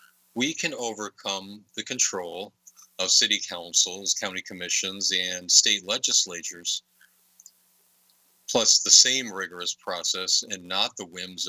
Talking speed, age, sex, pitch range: 115 wpm, 40-59, male, 90-110 Hz